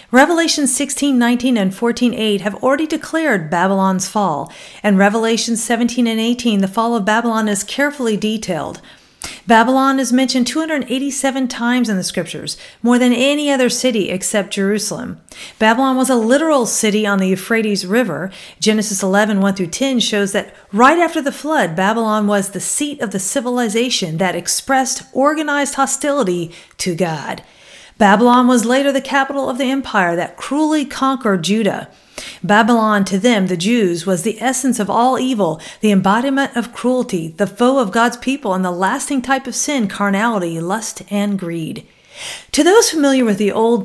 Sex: female